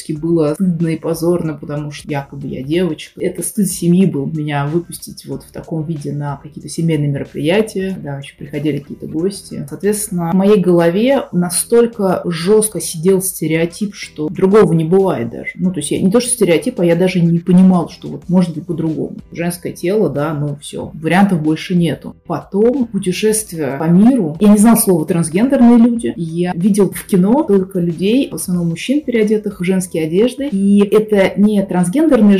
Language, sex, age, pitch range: Russian, female, 20-39, 165-205 Hz